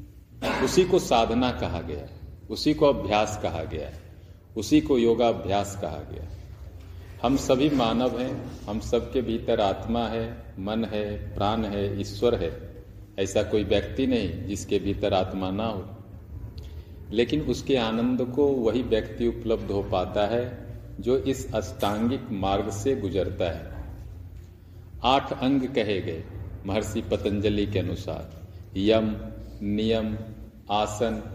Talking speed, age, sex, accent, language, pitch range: 130 wpm, 40-59, male, native, Hindi, 95-115 Hz